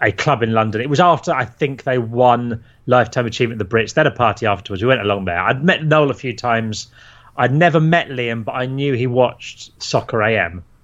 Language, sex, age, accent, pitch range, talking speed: English, male, 30-49, British, 120-150 Hz, 235 wpm